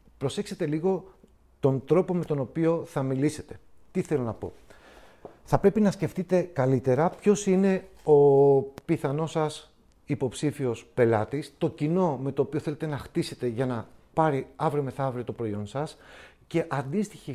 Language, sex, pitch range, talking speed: Greek, male, 130-160 Hz, 150 wpm